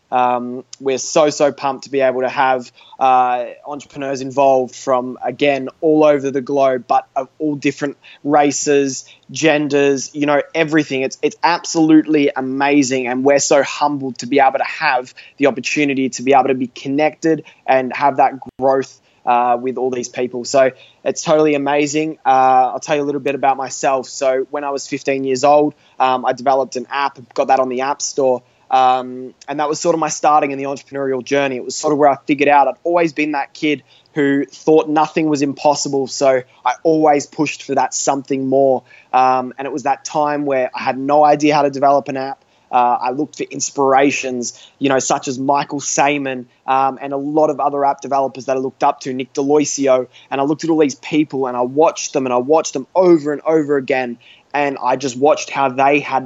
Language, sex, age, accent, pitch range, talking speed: English, male, 20-39, Australian, 130-150 Hz, 210 wpm